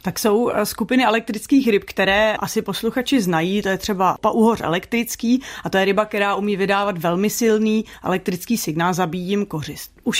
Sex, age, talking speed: female, 30-49, 170 wpm